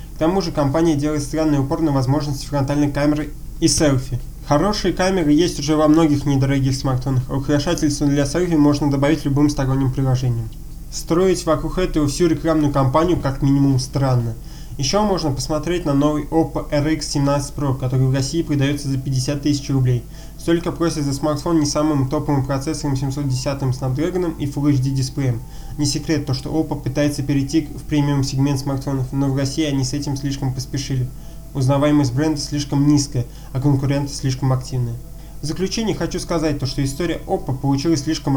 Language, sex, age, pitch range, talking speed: Russian, male, 20-39, 135-155 Hz, 165 wpm